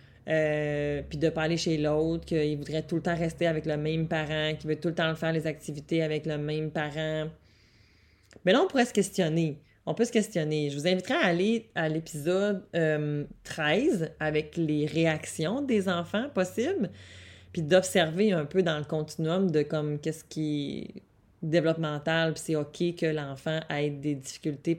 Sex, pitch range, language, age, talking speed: female, 150-170 Hz, French, 30-49, 180 wpm